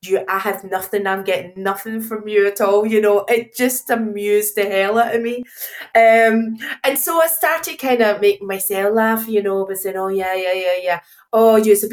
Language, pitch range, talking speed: English, 185-235 Hz, 210 wpm